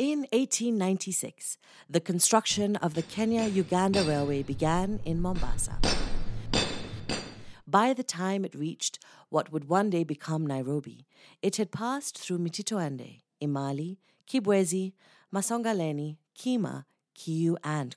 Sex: female